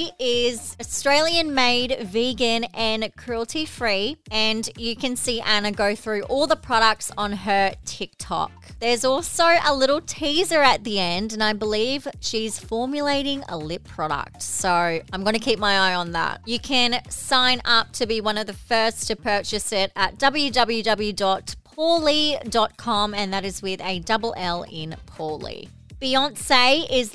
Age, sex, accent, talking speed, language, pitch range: 30-49, female, Australian, 155 wpm, English, 200-255 Hz